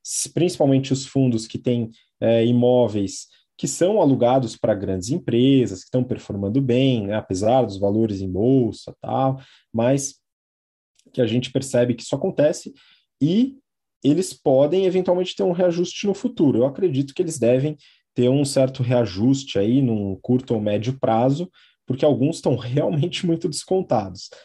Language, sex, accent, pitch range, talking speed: Portuguese, male, Brazilian, 115-155 Hz, 155 wpm